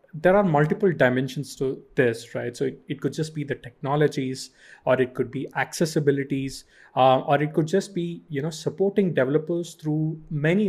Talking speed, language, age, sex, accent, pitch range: 180 wpm, English, 20-39, male, Indian, 135-165 Hz